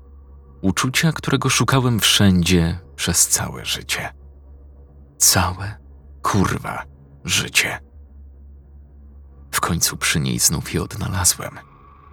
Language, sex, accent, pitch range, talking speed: Polish, male, native, 70-95 Hz, 85 wpm